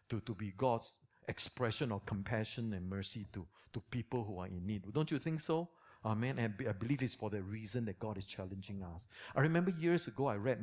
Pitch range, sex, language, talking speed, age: 110-145 Hz, male, English, 230 wpm, 50-69